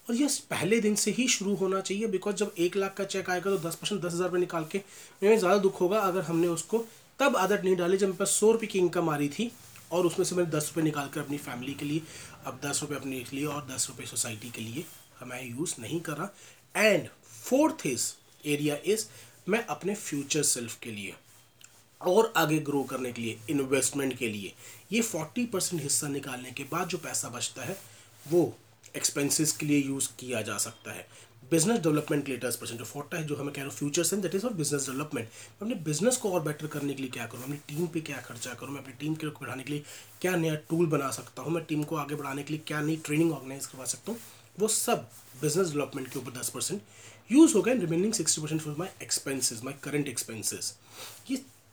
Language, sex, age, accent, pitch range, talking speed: Hindi, male, 30-49, native, 130-180 Hz, 220 wpm